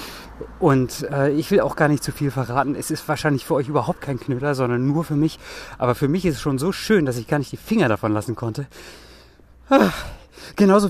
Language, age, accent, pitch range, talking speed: German, 30-49, German, 125-160 Hz, 225 wpm